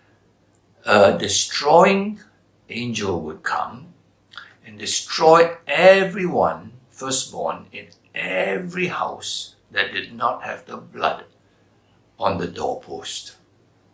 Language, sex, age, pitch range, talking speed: English, male, 60-79, 95-120 Hz, 90 wpm